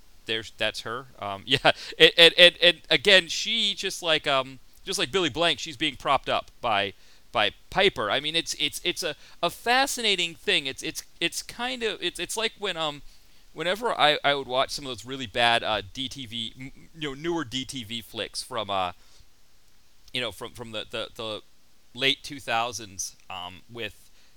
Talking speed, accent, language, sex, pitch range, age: 185 wpm, American, English, male, 120-170 Hz, 30-49